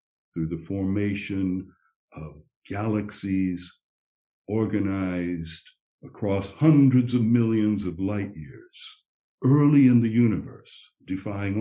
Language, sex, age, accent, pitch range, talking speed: English, male, 60-79, American, 95-125 Hz, 95 wpm